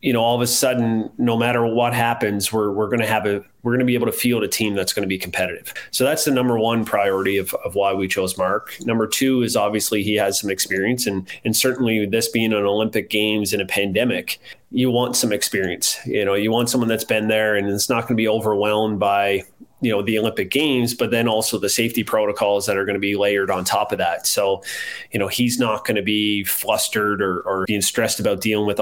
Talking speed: 245 wpm